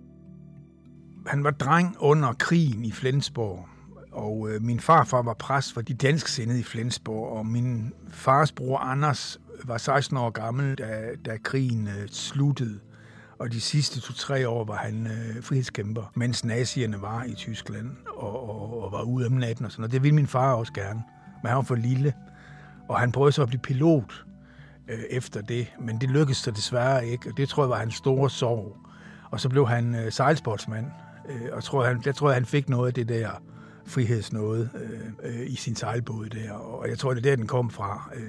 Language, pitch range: Danish, 115-135 Hz